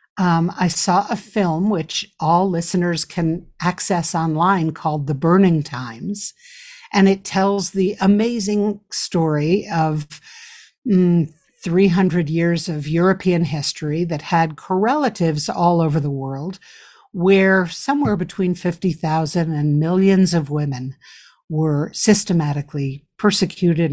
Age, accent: 60-79, American